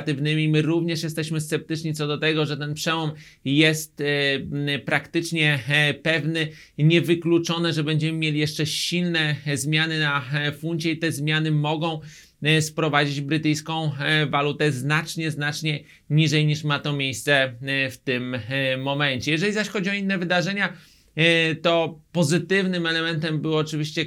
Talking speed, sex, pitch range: 125 wpm, male, 150-165 Hz